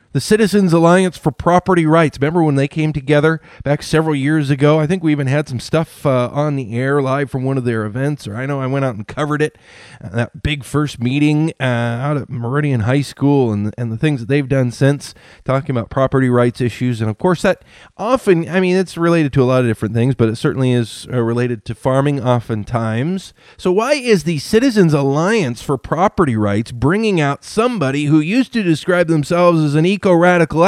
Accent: American